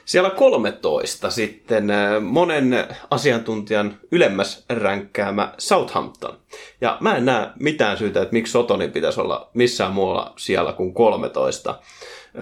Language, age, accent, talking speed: Finnish, 30-49, native, 115 wpm